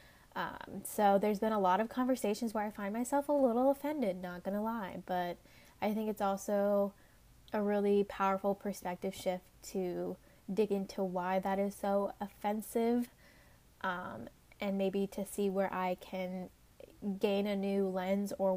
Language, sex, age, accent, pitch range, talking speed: English, female, 20-39, American, 190-215 Hz, 160 wpm